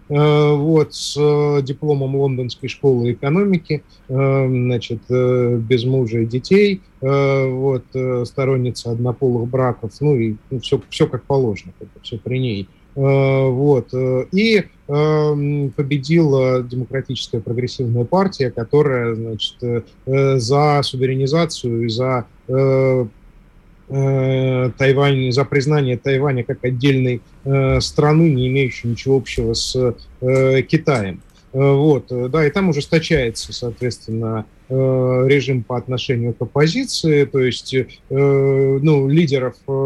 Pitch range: 125-140 Hz